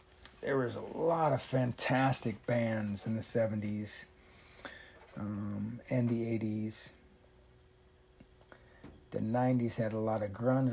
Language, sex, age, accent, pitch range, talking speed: English, male, 40-59, American, 110-130 Hz, 115 wpm